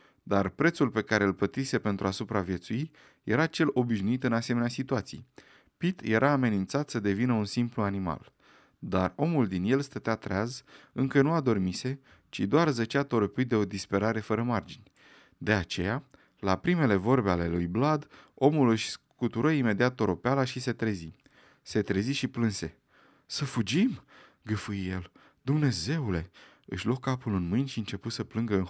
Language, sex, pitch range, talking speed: Romanian, male, 100-135 Hz, 160 wpm